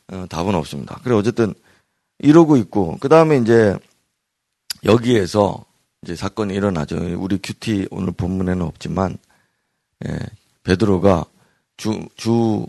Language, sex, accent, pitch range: Korean, male, native, 95-115 Hz